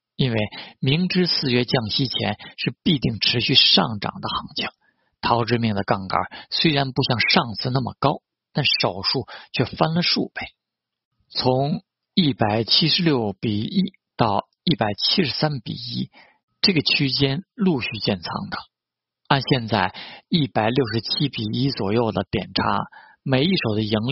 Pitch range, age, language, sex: 110-145 Hz, 50-69, Chinese, male